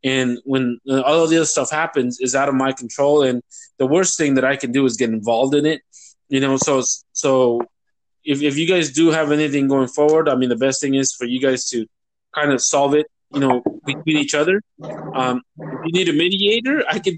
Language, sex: English, male